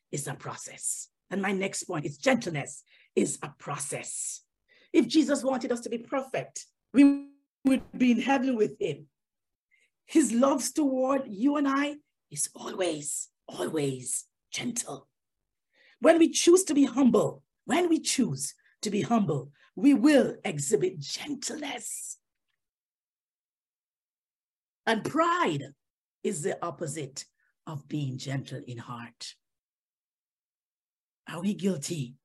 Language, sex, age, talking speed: English, female, 50-69, 120 wpm